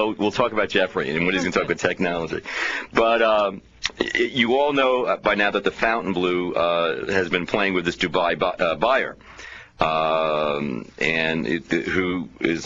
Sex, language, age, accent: male, English, 40-59, American